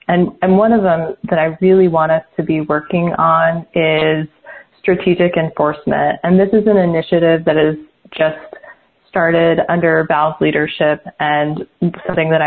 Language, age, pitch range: English, 20-39, 155-180 Hz